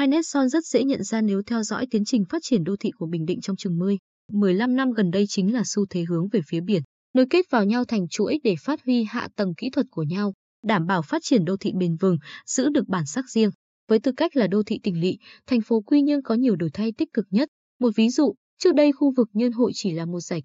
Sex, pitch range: female, 195-255 Hz